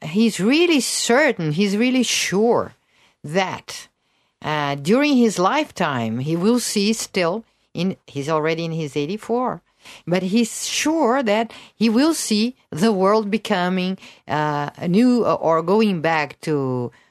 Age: 50-69